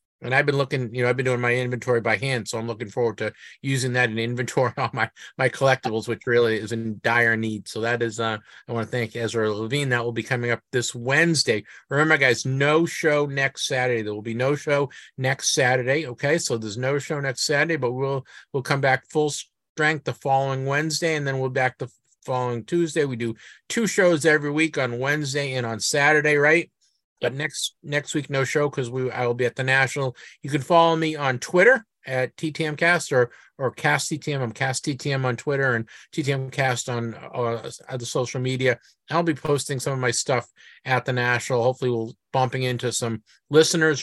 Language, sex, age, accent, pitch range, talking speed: English, male, 50-69, American, 120-145 Hz, 210 wpm